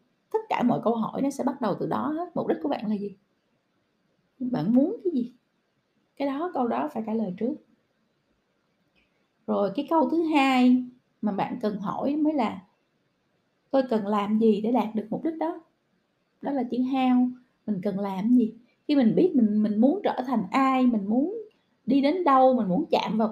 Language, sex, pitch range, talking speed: Vietnamese, female, 220-270 Hz, 200 wpm